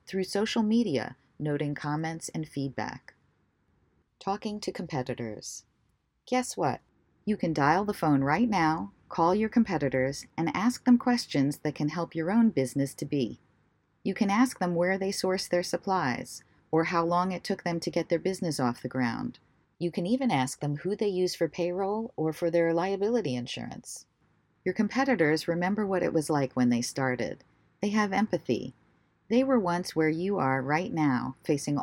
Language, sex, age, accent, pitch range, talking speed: English, female, 40-59, American, 140-190 Hz, 175 wpm